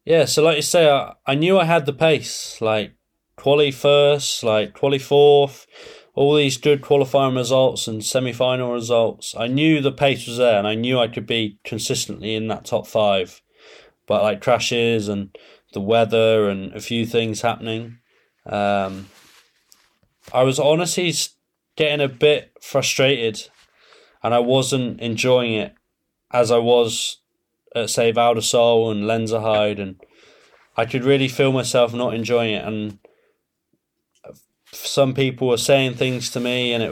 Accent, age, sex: British, 20-39, male